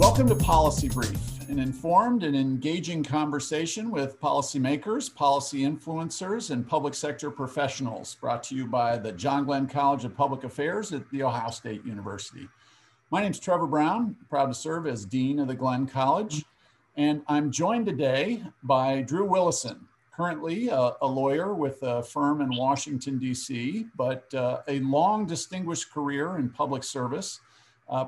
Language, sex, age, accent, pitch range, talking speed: English, male, 50-69, American, 130-155 Hz, 160 wpm